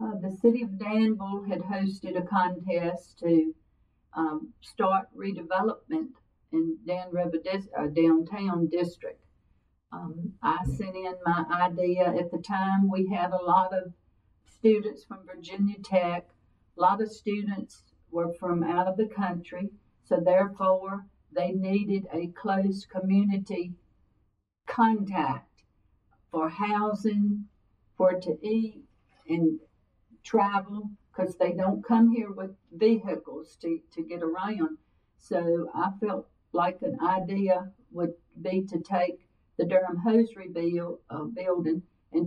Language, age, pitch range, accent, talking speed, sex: English, 60-79, 175-205 Hz, American, 130 wpm, female